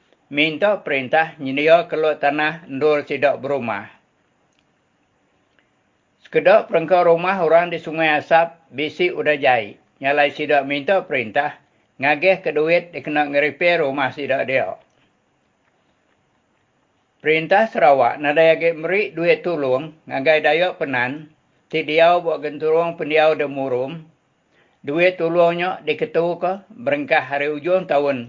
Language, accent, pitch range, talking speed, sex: English, Indonesian, 140-165 Hz, 110 wpm, male